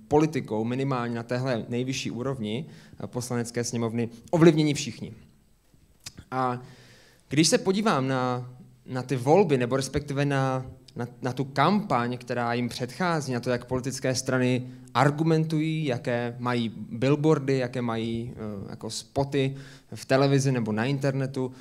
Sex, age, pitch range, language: male, 20-39, 120-150 Hz, Czech